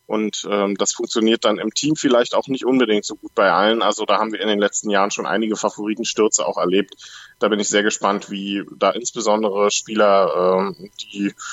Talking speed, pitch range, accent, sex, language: 205 wpm, 105-120 Hz, German, male, German